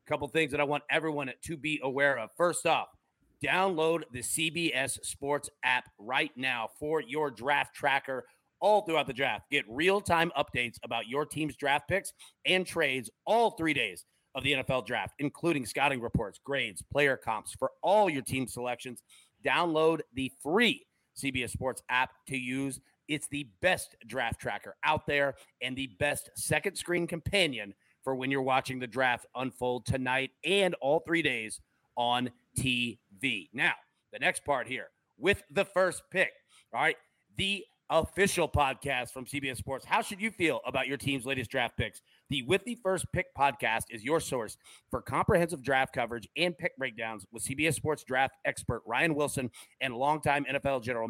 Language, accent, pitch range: English, American, 130-165 Hz